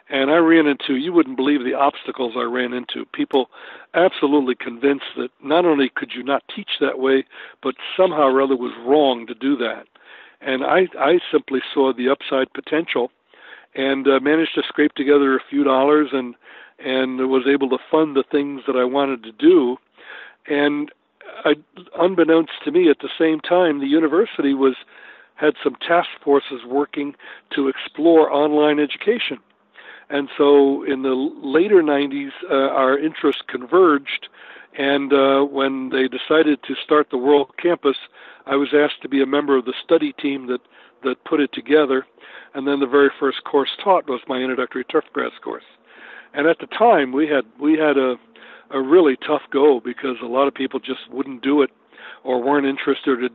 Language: English